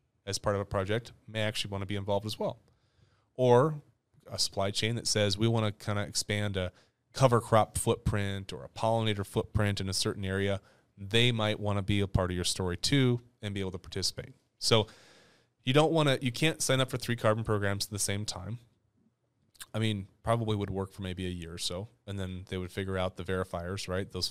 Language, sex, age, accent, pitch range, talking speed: English, male, 30-49, American, 100-115 Hz, 225 wpm